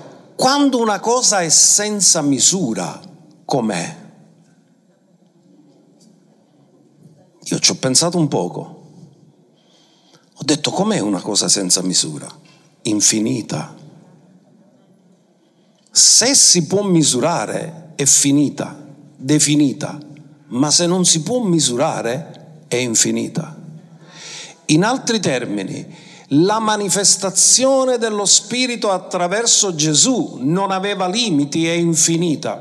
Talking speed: 90 wpm